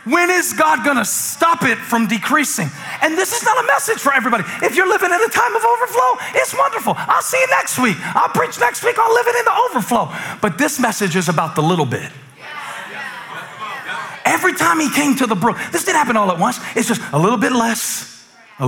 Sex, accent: male, American